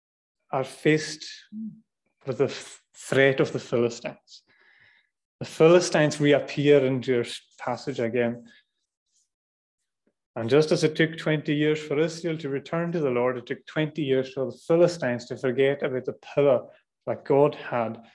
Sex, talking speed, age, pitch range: male, 145 wpm, 30-49, 130-170 Hz